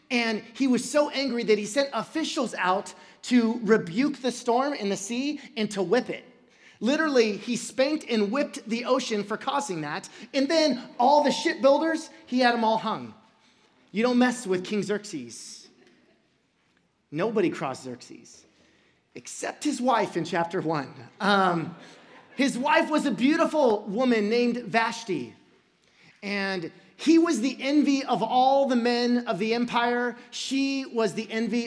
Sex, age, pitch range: male, 30-49, 205-265 Hz